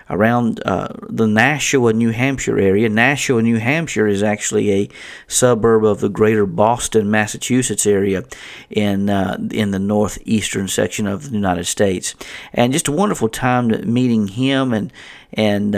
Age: 40-59